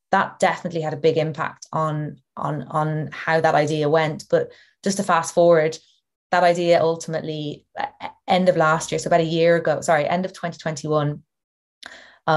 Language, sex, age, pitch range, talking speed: English, female, 20-39, 150-170 Hz, 160 wpm